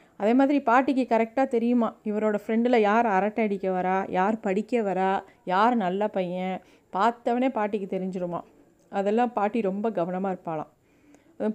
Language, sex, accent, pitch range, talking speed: Tamil, female, native, 195-235 Hz, 135 wpm